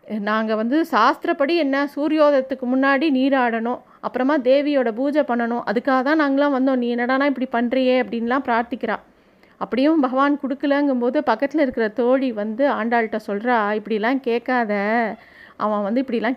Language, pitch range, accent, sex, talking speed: Tamil, 230-290 Hz, native, female, 130 wpm